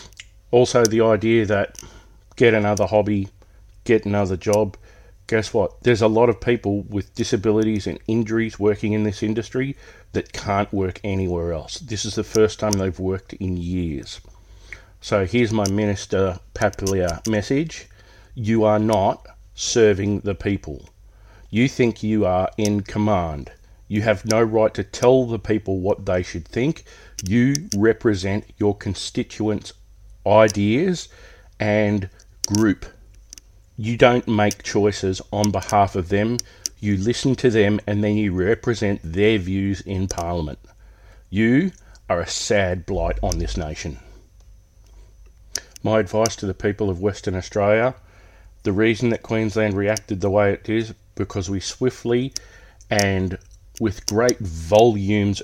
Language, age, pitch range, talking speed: English, 40-59, 95-110 Hz, 140 wpm